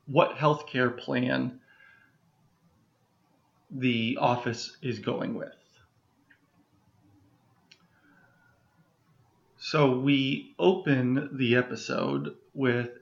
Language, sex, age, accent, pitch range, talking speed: English, male, 30-49, American, 125-145 Hz, 70 wpm